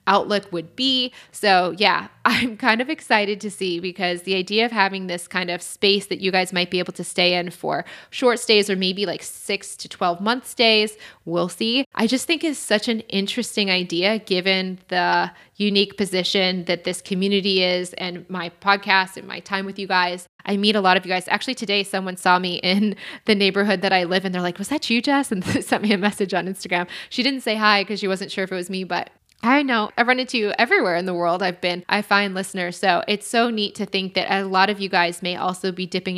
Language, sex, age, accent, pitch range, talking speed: English, female, 20-39, American, 180-215 Hz, 235 wpm